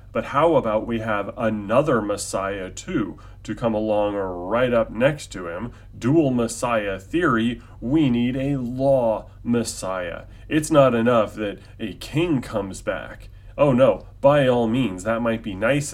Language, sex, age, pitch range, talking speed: English, male, 30-49, 105-130 Hz, 155 wpm